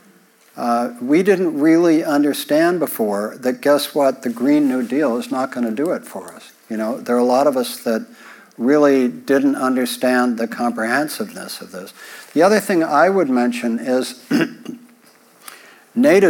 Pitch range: 120-150 Hz